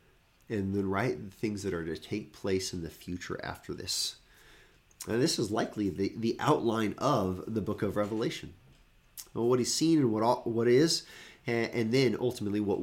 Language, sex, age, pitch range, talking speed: English, male, 30-49, 95-115 Hz, 185 wpm